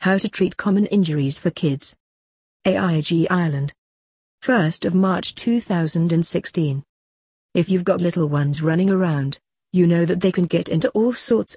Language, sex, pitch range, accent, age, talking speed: English, female, 155-190 Hz, British, 40-59, 150 wpm